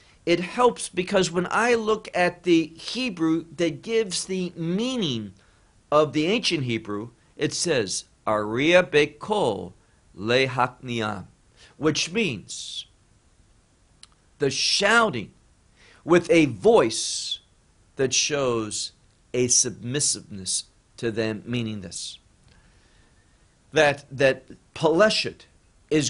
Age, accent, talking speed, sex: 50-69, American, 90 wpm, male